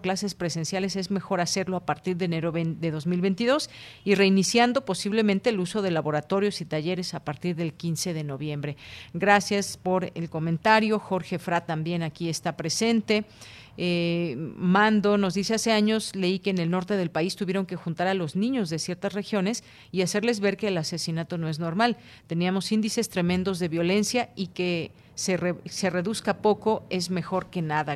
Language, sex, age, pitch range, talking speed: Spanish, female, 40-59, 170-205 Hz, 180 wpm